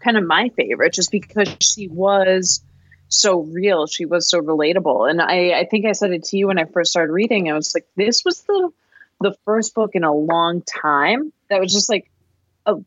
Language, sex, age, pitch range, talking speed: English, female, 20-39, 165-210 Hz, 215 wpm